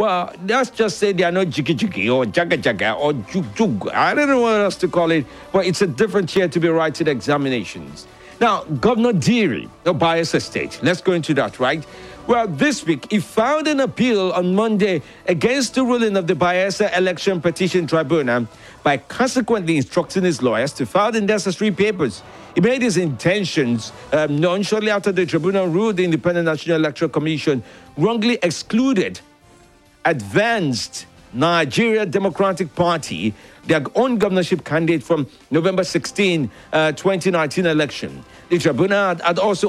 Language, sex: English, male